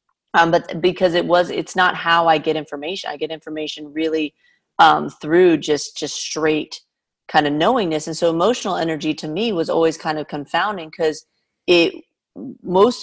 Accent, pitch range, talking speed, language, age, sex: American, 155-190 Hz, 170 wpm, English, 30-49, female